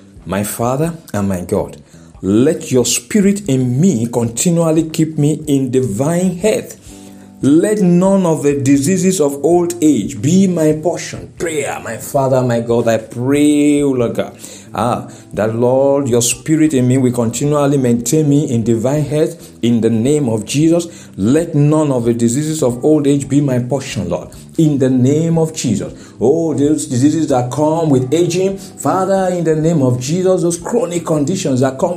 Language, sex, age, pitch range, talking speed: English, male, 50-69, 125-170 Hz, 165 wpm